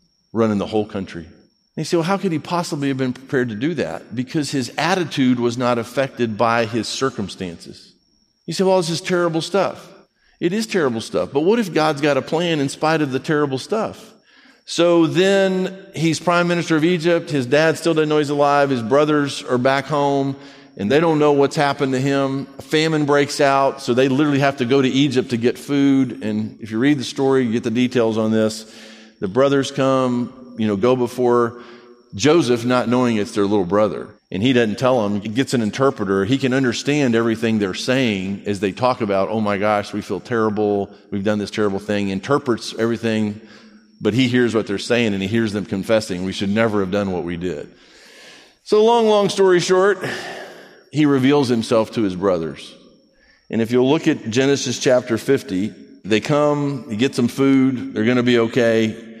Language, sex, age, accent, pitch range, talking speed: English, male, 50-69, American, 110-145 Hz, 205 wpm